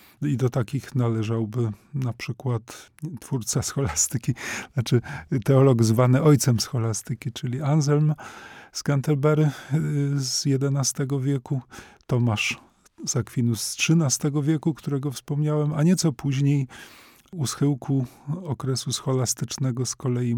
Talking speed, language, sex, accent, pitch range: 110 wpm, Polish, male, native, 125-145 Hz